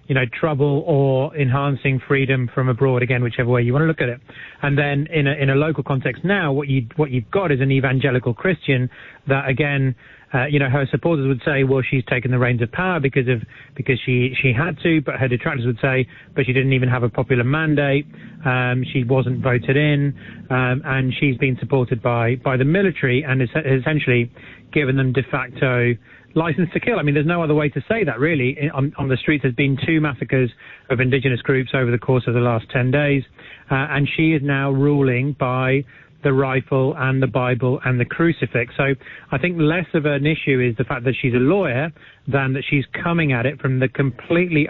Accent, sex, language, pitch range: British, male, English, 130-145 Hz